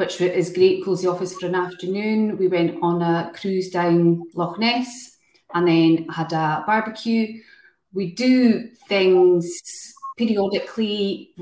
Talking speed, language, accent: 135 wpm, English, British